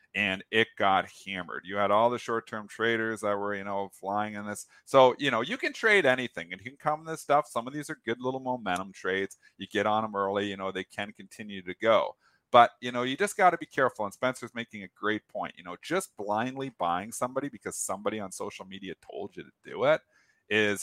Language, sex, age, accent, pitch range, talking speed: English, male, 40-59, American, 95-125 Hz, 235 wpm